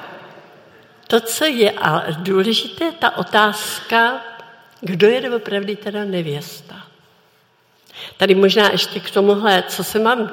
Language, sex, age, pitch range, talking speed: Czech, female, 60-79, 180-225 Hz, 115 wpm